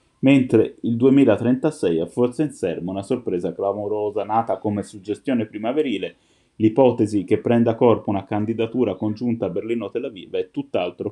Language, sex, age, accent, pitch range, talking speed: Italian, male, 20-39, native, 95-115 Hz, 140 wpm